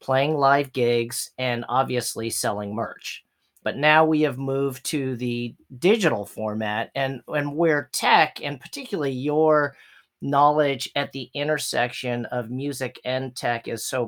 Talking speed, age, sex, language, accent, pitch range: 140 wpm, 40-59, male, English, American, 125-145 Hz